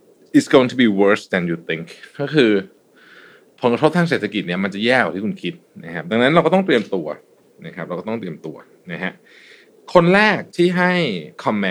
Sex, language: male, Thai